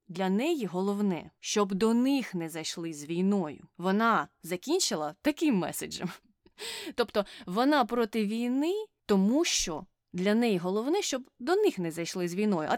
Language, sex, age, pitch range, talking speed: Ukrainian, female, 20-39, 180-255 Hz, 145 wpm